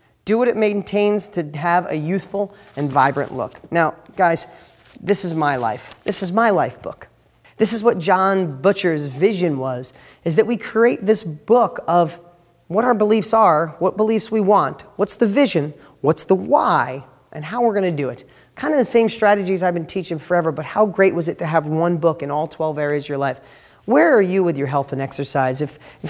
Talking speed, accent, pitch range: 205 wpm, American, 175-235 Hz